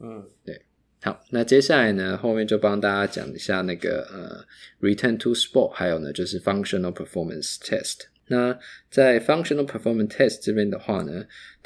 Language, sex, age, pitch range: Chinese, male, 20-39, 95-115 Hz